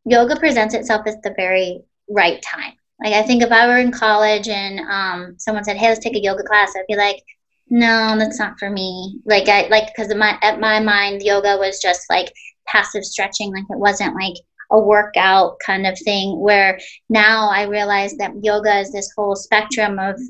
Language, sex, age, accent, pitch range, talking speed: English, female, 30-49, American, 195-220 Hz, 200 wpm